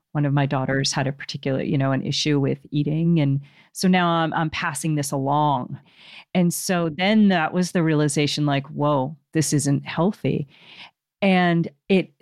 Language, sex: English, female